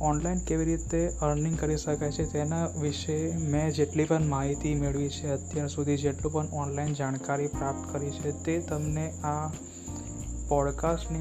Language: Hindi